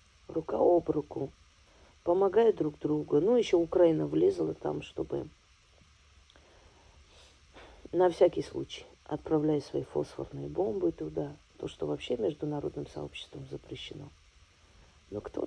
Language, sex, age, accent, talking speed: Russian, female, 40-59, native, 110 wpm